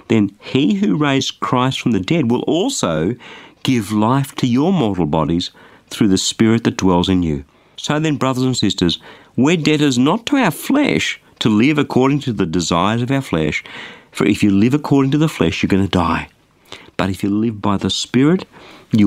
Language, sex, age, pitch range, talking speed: English, male, 50-69, 90-140 Hz, 200 wpm